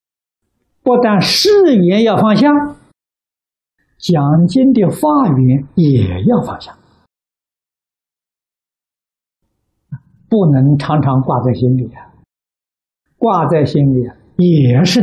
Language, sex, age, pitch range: Chinese, male, 60-79, 140-225 Hz